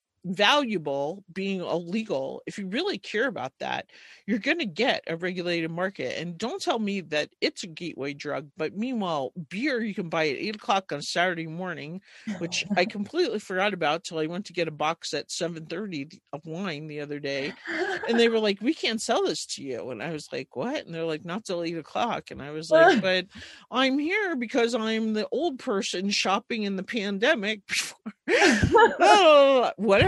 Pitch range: 165-235 Hz